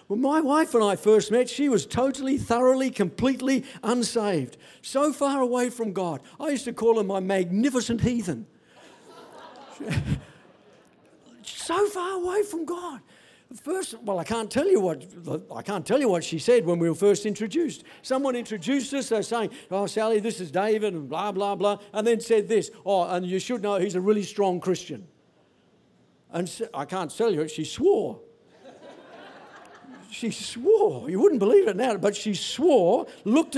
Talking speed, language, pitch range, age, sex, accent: 170 wpm, English, 205-285 Hz, 60-79, male, British